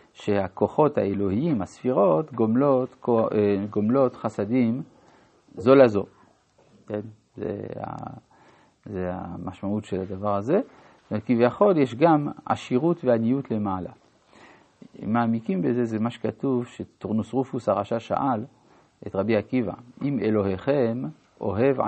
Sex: male